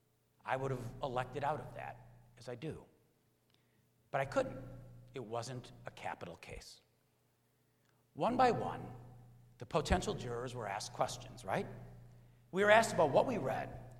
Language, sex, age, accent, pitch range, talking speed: English, male, 60-79, American, 115-150 Hz, 150 wpm